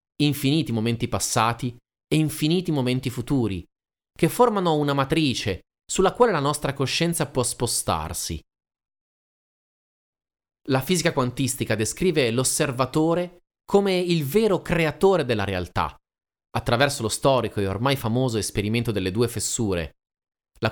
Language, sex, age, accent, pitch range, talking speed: Italian, male, 30-49, native, 110-150 Hz, 115 wpm